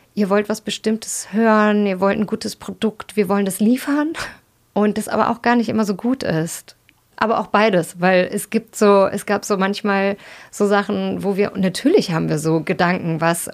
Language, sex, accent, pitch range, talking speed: German, female, German, 180-220 Hz, 200 wpm